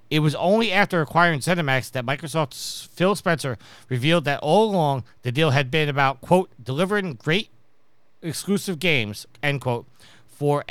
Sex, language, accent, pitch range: male, English, American, 125-175 Hz